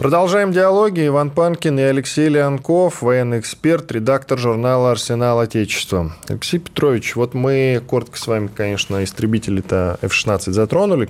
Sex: male